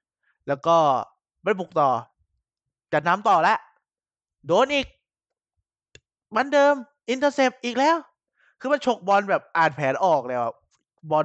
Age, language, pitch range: 20-39, Thai, 125-170 Hz